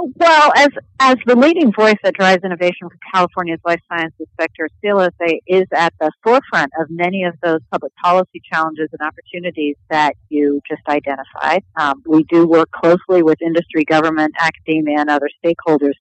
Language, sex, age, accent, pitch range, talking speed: English, female, 50-69, American, 155-185 Hz, 165 wpm